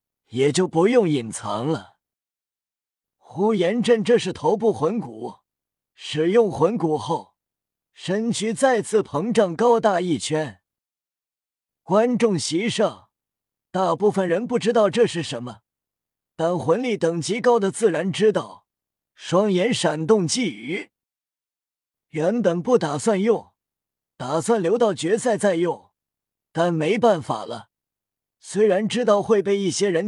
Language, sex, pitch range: Chinese, male, 160-220 Hz